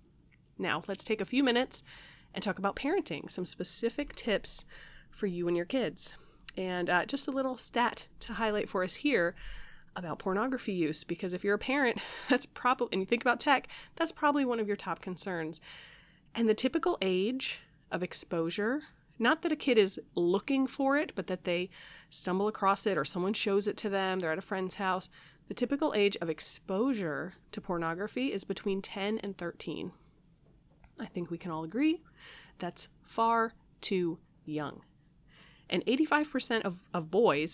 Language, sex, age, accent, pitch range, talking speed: English, female, 30-49, American, 175-230 Hz, 175 wpm